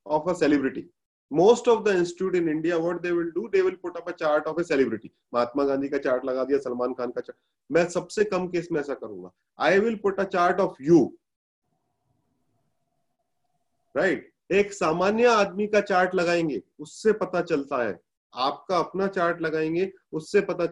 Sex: male